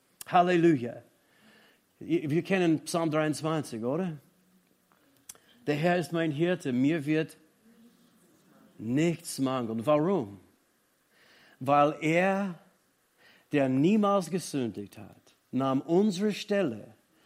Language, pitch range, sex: German, 145-210 Hz, male